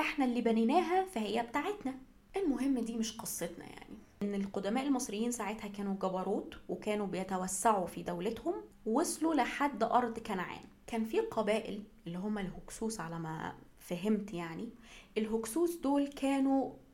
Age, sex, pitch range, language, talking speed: 20-39, female, 195-245 Hz, Arabic, 130 wpm